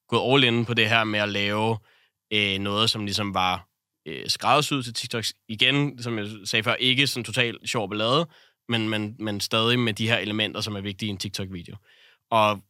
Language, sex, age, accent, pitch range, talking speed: Danish, male, 20-39, native, 105-125 Hz, 190 wpm